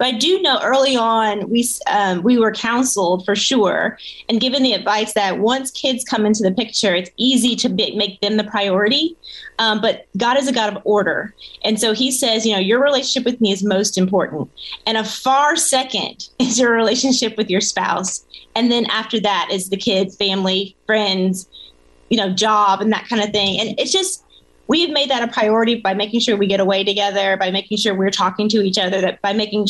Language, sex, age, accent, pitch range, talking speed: English, female, 30-49, American, 200-240 Hz, 215 wpm